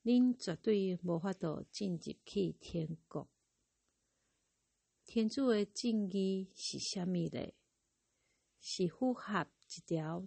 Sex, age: female, 50-69